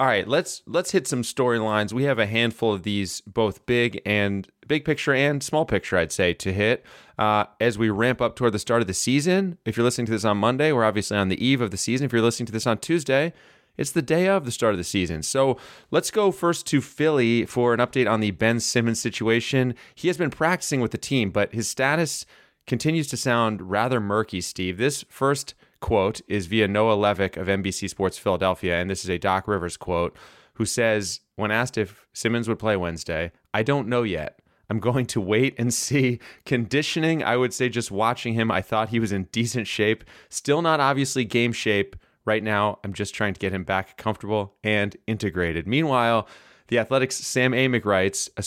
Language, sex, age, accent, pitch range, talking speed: English, male, 30-49, American, 105-130 Hz, 215 wpm